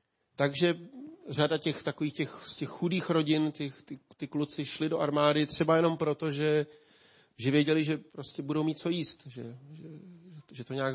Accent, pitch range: native, 135-155 Hz